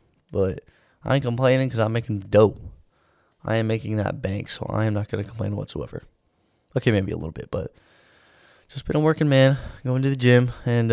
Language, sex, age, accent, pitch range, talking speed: English, male, 20-39, American, 105-125 Hz, 205 wpm